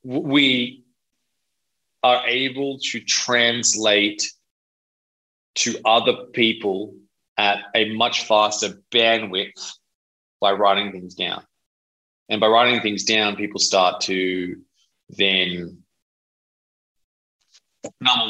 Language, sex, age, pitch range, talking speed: English, male, 20-39, 95-120 Hz, 90 wpm